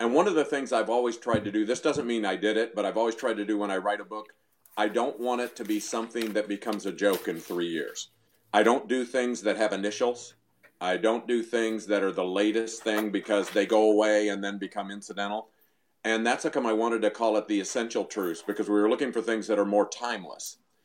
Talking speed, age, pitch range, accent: 250 wpm, 50-69, 105-125 Hz, American